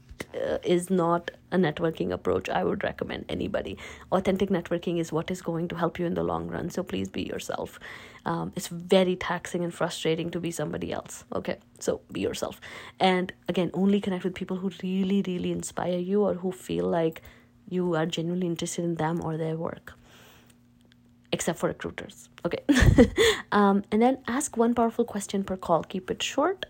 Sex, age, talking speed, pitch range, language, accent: female, 20-39, 180 wpm, 170-200 Hz, English, Indian